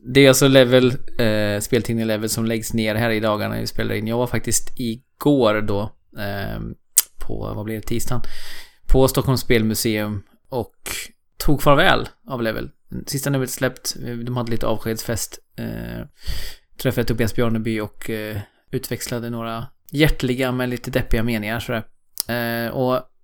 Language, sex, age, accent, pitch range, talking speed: Swedish, male, 20-39, native, 110-125 Hz, 145 wpm